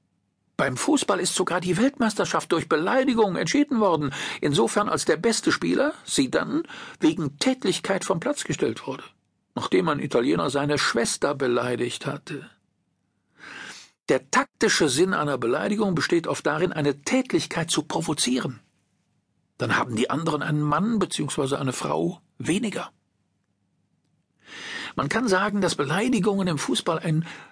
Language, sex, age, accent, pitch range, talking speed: German, male, 50-69, German, 160-265 Hz, 130 wpm